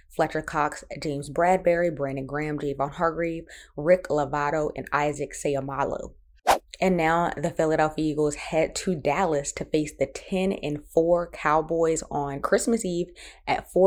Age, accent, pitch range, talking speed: 20-39, American, 145-180 Hz, 135 wpm